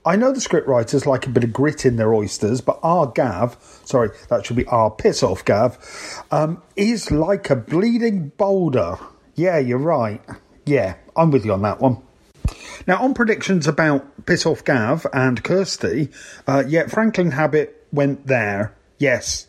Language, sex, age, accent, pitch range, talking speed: English, male, 40-59, British, 130-180 Hz, 160 wpm